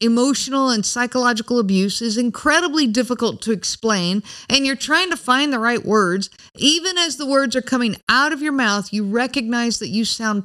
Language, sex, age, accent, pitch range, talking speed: English, female, 50-69, American, 205-285 Hz, 185 wpm